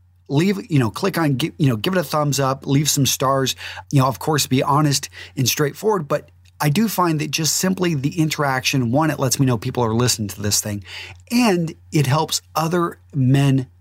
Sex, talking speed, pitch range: male, 210 wpm, 110-145 Hz